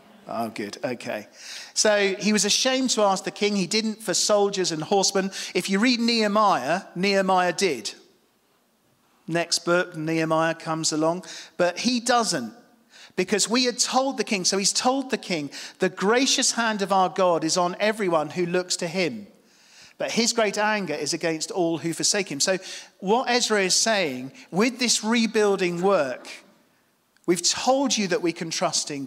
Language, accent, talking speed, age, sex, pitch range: English, British, 170 wpm, 40-59, male, 165-210 Hz